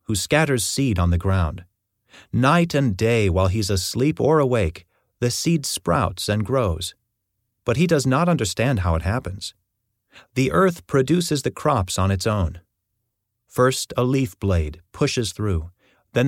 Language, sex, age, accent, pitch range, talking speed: English, male, 30-49, American, 95-130 Hz, 155 wpm